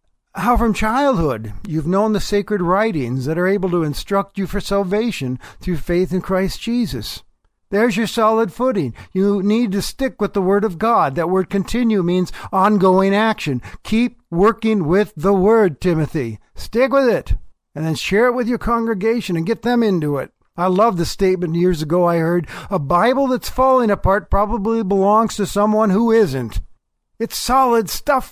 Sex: male